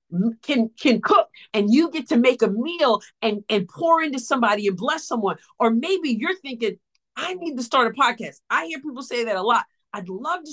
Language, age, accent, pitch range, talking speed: English, 50-69, American, 235-315 Hz, 215 wpm